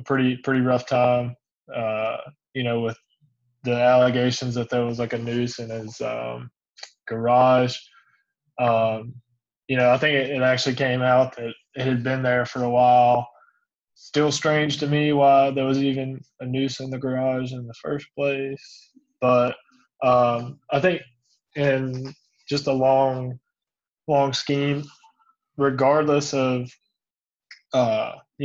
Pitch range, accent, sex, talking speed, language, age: 125-135 Hz, American, male, 145 wpm, English, 20-39